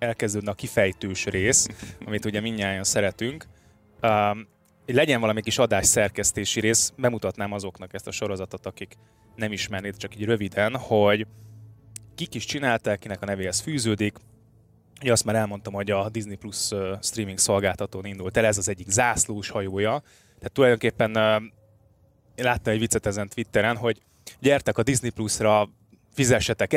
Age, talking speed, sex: 20-39, 135 wpm, male